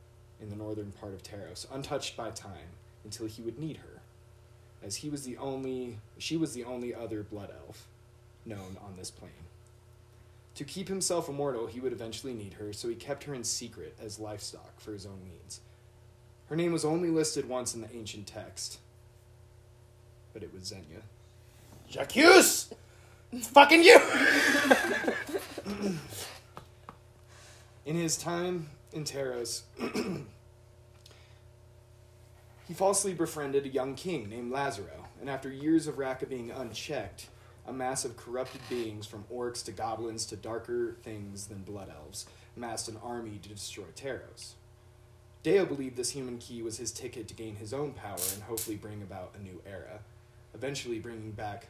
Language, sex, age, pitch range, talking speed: English, male, 20-39, 110-130 Hz, 150 wpm